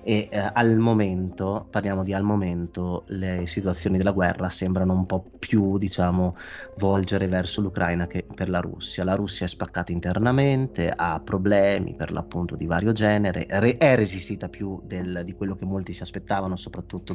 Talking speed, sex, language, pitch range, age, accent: 170 wpm, male, Italian, 90-100 Hz, 30-49, native